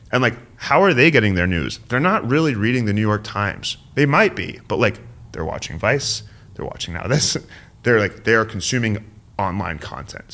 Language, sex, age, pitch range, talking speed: English, male, 30-49, 90-110 Hz, 195 wpm